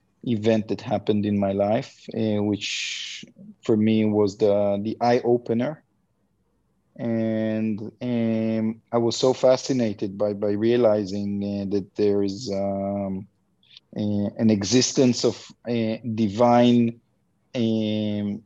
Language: English